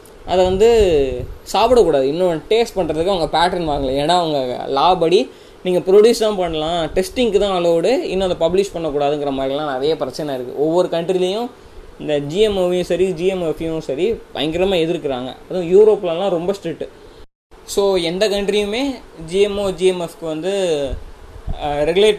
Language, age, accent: Tamil, 20-39, native